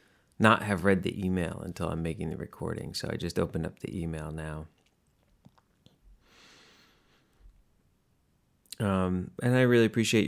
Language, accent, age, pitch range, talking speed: English, American, 30-49, 85-105 Hz, 135 wpm